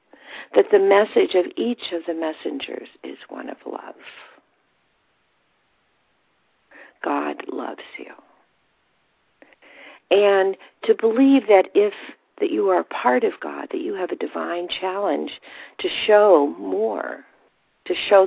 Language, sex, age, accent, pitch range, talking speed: English, female, 50-69, American, 165-270 Hz, 125 wpm